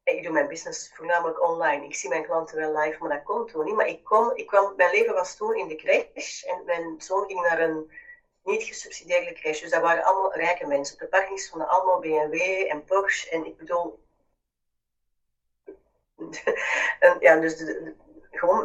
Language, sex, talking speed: Dutch, female, 195 wpm